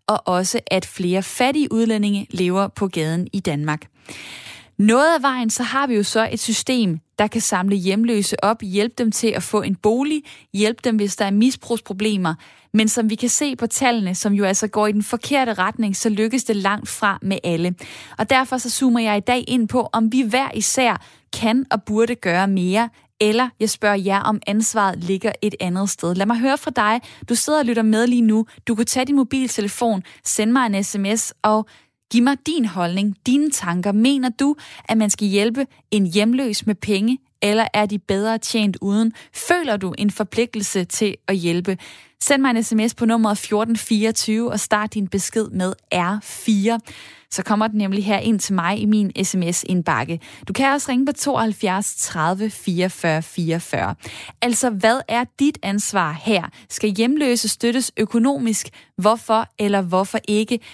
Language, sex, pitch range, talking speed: Danish, female, 195-235 Hz, 185 wpm